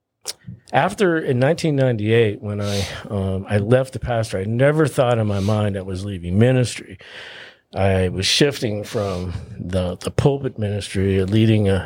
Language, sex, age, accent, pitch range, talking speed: English, male, 50-69, American, 100-130 Hz, 150 wpm